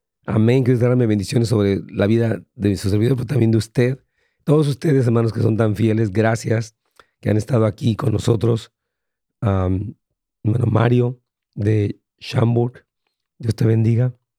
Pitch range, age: 110-130 Hz, 40-59